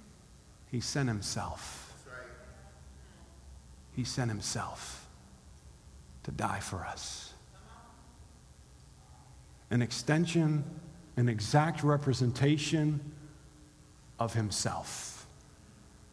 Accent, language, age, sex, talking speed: American, English, 40-59, male, 65 wpm